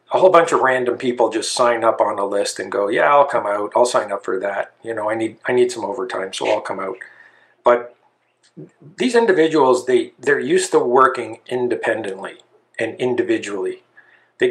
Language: English